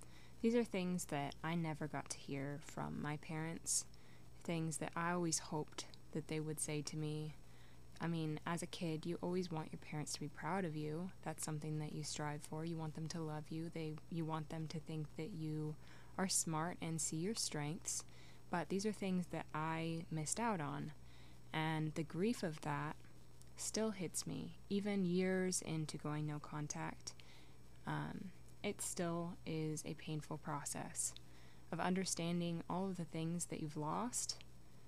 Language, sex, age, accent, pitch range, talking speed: English, female, 20-39, American, 145-170 Hz, 175 wpm